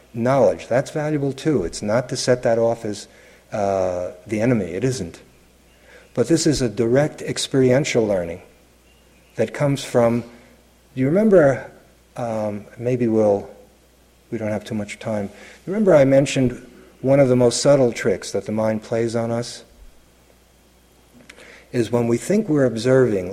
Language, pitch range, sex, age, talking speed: English, 105-130 Hz, male, 50-69, 155 wpm